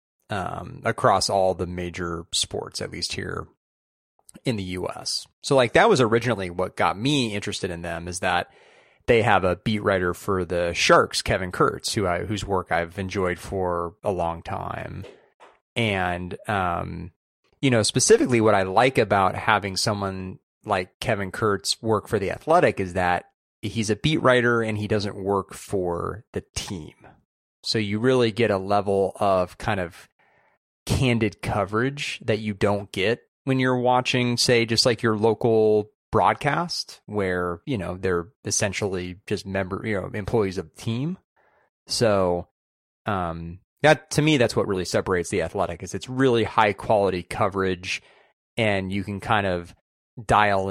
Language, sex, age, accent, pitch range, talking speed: English, male, 30-49, American, 90-110 Hz, 160 wpm